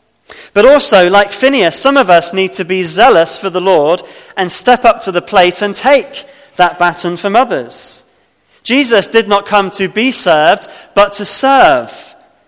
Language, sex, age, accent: English, male, 20-39, British